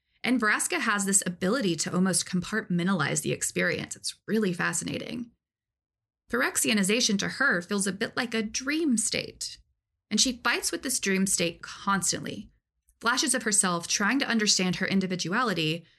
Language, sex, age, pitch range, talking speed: English, female, 20-39, 175-230 Hz, 145 wpm